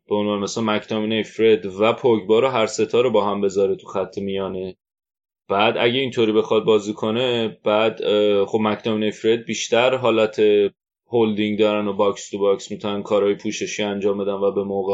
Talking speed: 170 wpm